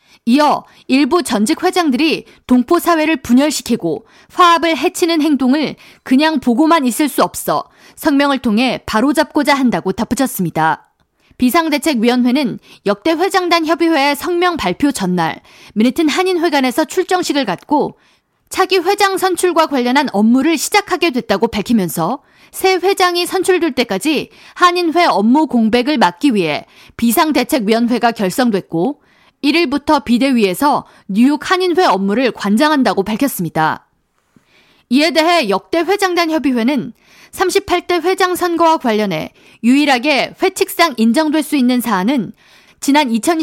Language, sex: Korean, female